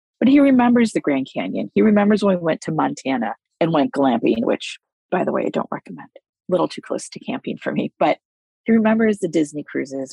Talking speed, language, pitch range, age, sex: 220 wpm, English, 170-255 Hz, 40-59, female